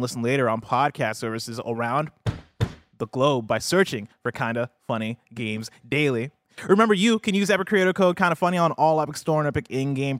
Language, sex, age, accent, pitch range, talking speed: English, male, 30-49, American, 125-165 Hz, 195 wpm